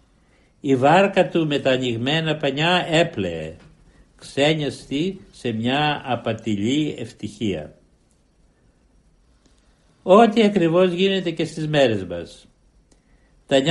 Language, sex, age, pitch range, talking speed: Greek, male, 60-79, 115-170 Hz, 90 wpm